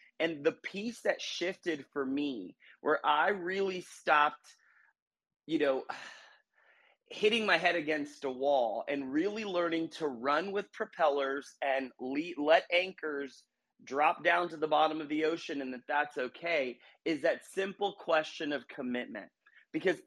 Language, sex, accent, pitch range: English, male, American, 140-175 Hz